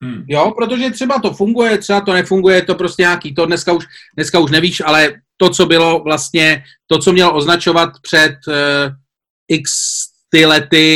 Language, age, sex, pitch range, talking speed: Czech, 40-59, male, 145-210 Hz, 180 wpm